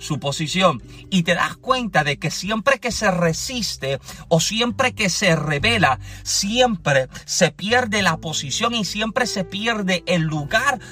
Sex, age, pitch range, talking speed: male, 40-59, 165-220 Hz, 155 wpm